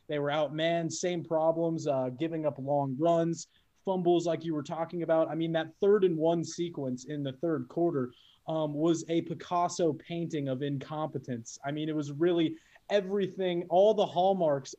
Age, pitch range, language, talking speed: 20-39, 165-215 Hz, English, 175 wpm